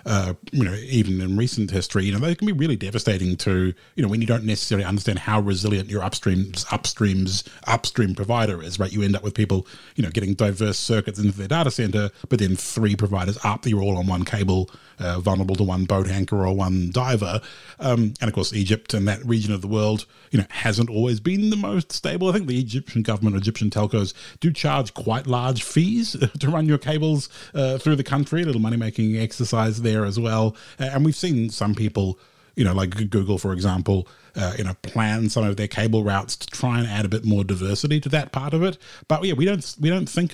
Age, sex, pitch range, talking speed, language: 30-49, male, 100-125 Hz, 225 wpm, English